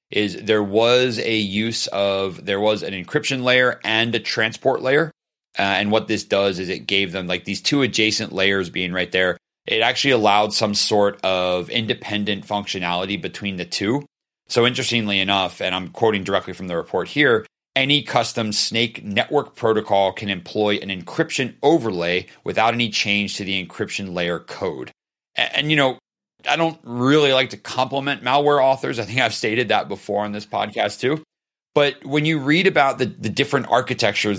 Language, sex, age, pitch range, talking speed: English, male, 30-49, 95-120 Hz, 180 wpm